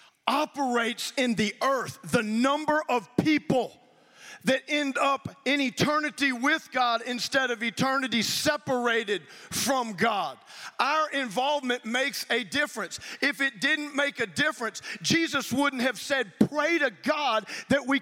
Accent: American